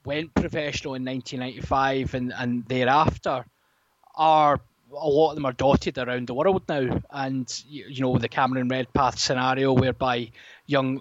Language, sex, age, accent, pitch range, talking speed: English, male, 20-39, British, 130-160 Hz, 160 wpm